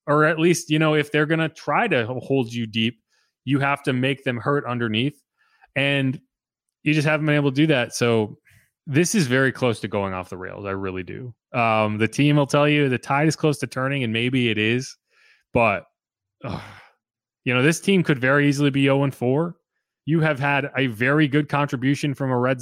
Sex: male